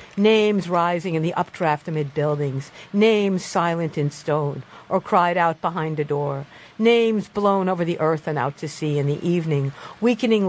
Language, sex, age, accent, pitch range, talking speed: English, female, 50-69, American, 150-195 Hz, 170 wpm